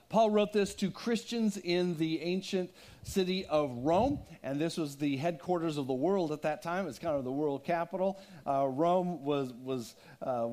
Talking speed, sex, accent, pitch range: 190 wpm, male, American, 150-200 Hz